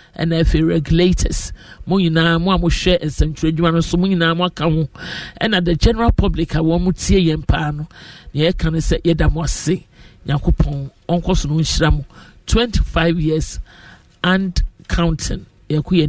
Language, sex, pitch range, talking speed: English, male, 160-175 Hz, 155 wpm